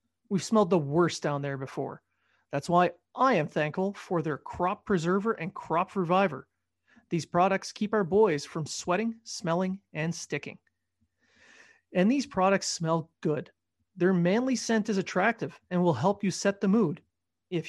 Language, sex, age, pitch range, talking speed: English, male, 30-49, 165-205 Hz, 160 wpm